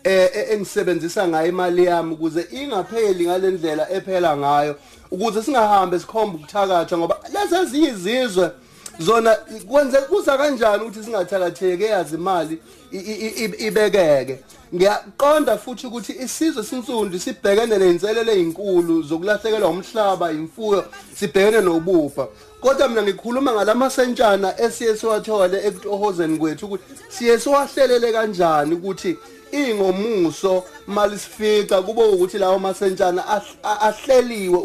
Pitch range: 185-250 Hz